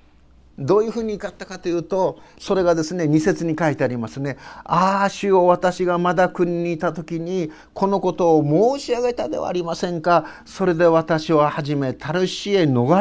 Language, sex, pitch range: Japanese, male, 155-205 Hz